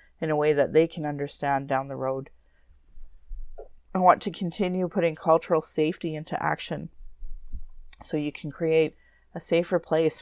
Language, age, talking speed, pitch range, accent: English, 30-49, 155 wpm, 145-170 Hz, American